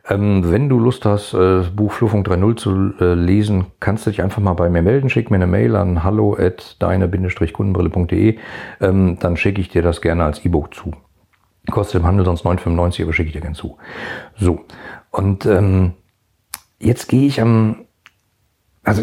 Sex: male